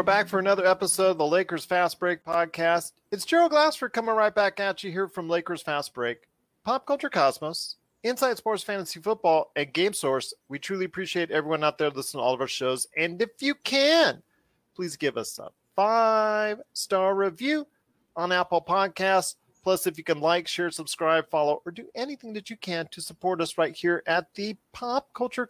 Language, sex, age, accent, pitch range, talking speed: English, male, 40-59, American, 170-245 Hz, 195 wpm